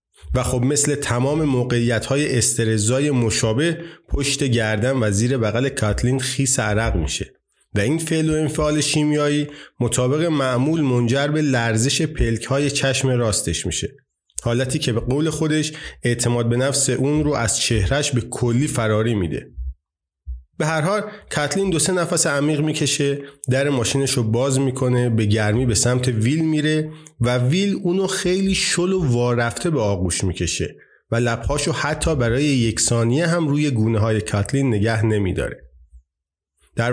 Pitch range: 115-150 Hz